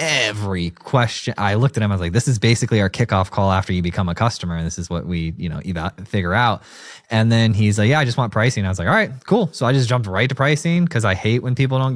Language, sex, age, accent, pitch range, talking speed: English, male, 20-39, American, 100-130 Hz, 285 wpm